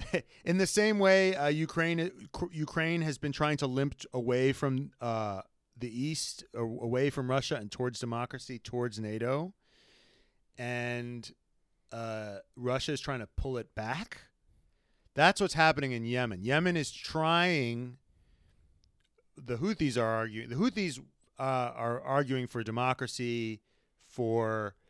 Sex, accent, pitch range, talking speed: male, American, 110-140 Hz, 135 wpm